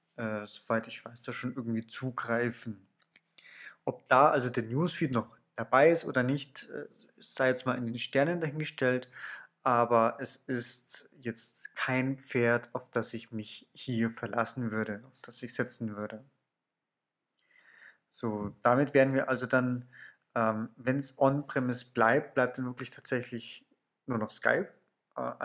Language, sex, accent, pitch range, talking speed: German, male, German, 115-140 Hz, 145 wpm